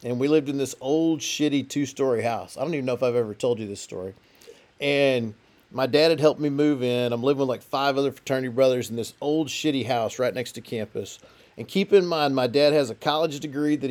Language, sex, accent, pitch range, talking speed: English, male, American, 130-160 Hz, 240 wpm